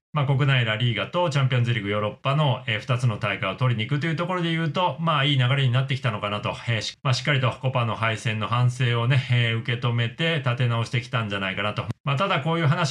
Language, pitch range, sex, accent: Japanese, 115-140 Hz, male, native